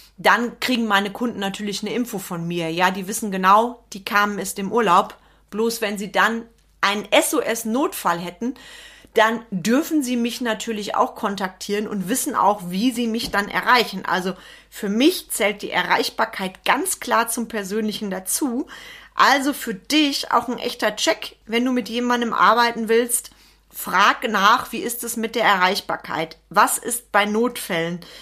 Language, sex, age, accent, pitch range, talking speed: German, female, 40-59, German, 195-245 Hz, 160 wpm